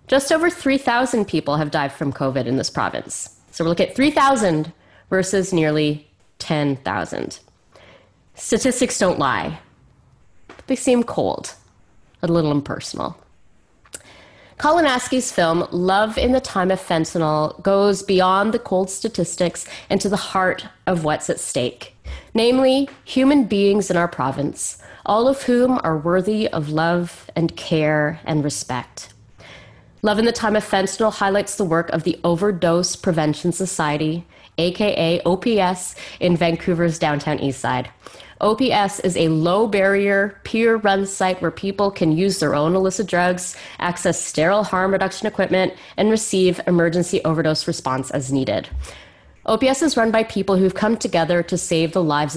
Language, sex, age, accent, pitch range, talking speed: English, female, 30-49, American, 160-210 Hz, 145 wpm